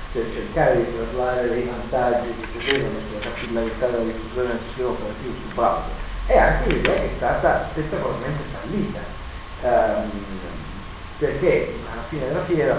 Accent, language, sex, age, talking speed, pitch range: native, Italian, male, 40-59, 140 wpm, 110-125 Hz